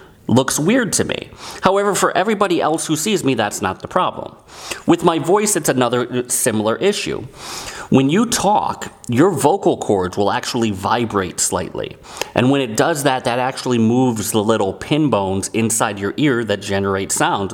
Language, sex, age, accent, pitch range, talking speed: English, male, 30-49, American, 105-130 Hz, 170 wpm